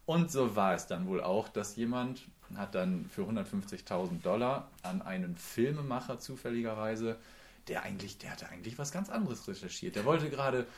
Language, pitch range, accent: German, 115-185 Hz, German